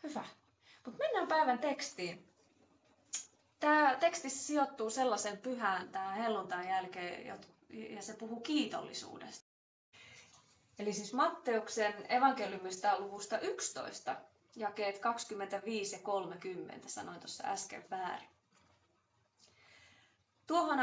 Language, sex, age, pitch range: Finnish, female, 20-39, 190-240 Hz